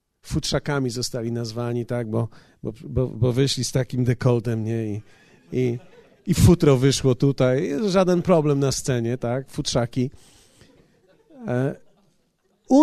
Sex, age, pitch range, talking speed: male, 40-59, 140-195 Hz, 110 wpm